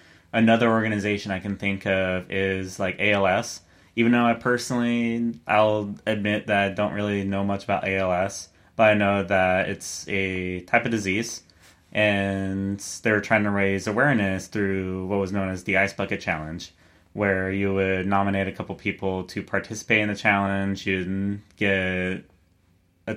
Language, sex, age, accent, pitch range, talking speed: English, male, 20-39, American, 95-110 Hz, 160 wpm